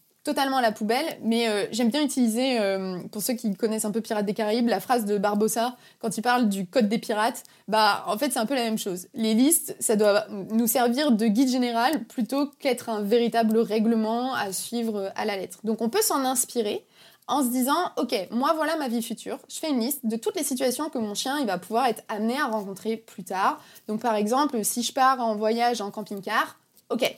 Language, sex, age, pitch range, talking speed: French, female, 20-39, 215-260 Hz, 225 wpm